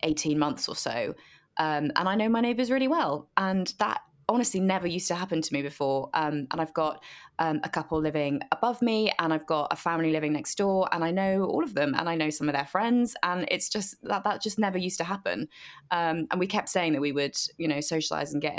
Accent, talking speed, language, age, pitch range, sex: British, 245 wpm, English, 20-39, 150-185 Hz, female